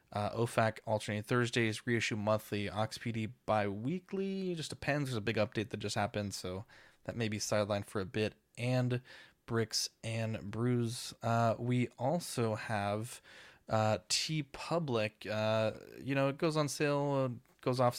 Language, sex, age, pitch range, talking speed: English, male, 20-39, 110-130 Hz, 145 wpm